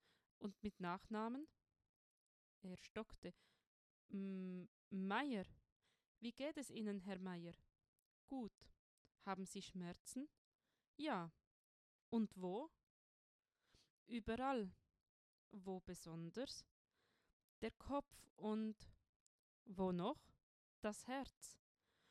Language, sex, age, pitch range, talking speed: German, female, 20-39, 190-250 Hz, 80 wpm